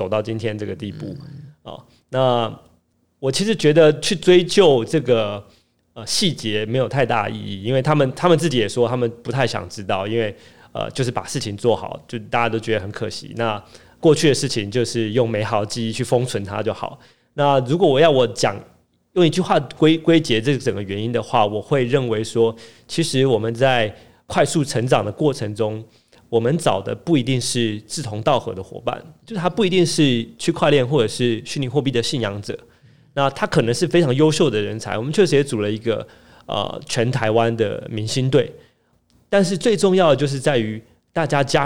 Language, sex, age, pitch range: Chinese, male, 30-49, 115-155 Hz